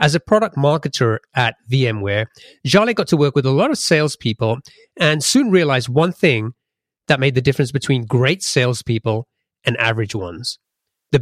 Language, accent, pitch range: English, British, 120-155 Hz